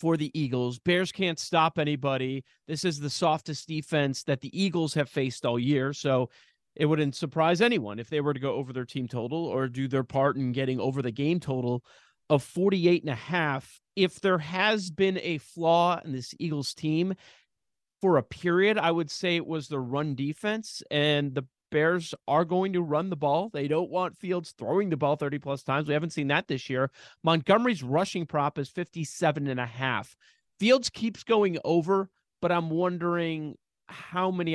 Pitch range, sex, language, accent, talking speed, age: 135-175 Hz, male, English, American, 185 wpm, 30-49